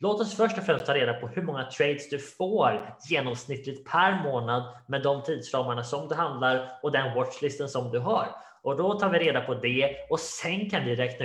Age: 20-39